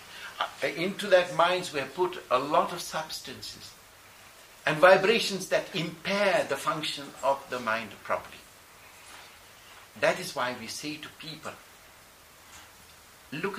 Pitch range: 115-185 Hz